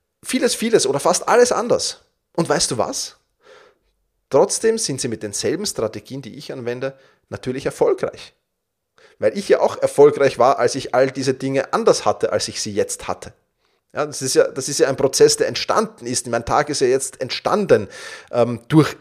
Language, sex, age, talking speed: German, male, 30-49, 185 wpm